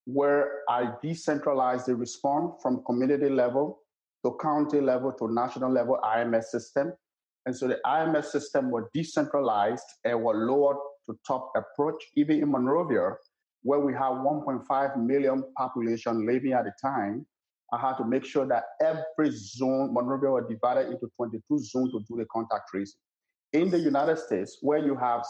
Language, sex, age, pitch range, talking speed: English, male, 50-69, 120-145 Hz, 160 wpm